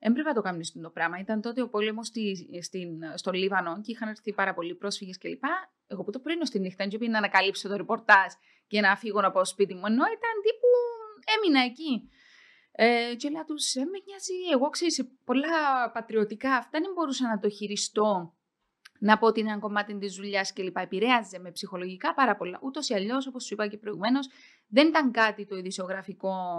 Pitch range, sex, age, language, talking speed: 200-270 Hz, female, 20-39, Greek, 195 wpm